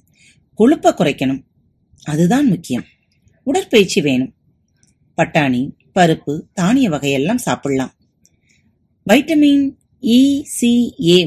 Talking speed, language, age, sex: 70 wpm, Tamil, 30-49, female